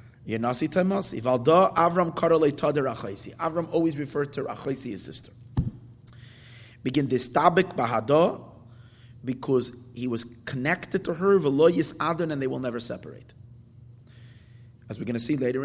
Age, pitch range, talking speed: 30-49, 120-140 Hz, 105 wpm